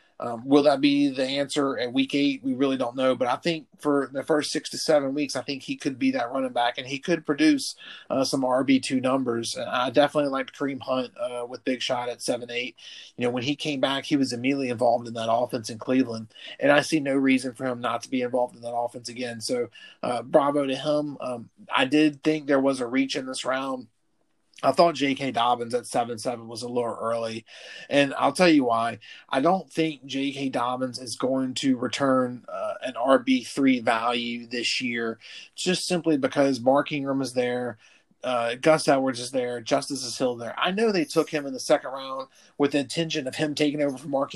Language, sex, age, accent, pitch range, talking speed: English, male, 30-49, American, 125-150 Hz, 220 wpm